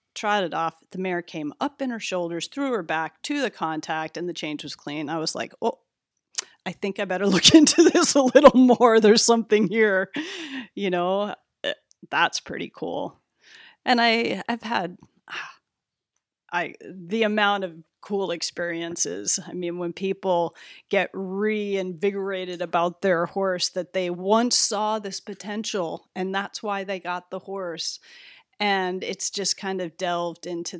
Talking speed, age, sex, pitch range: 160 wpm, 30-49, female, 170-215 Hz